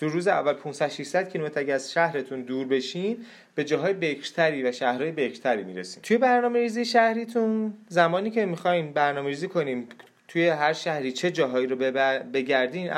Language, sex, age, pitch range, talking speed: Persian, male, 30-49, 135-195 Hz, 155 wpm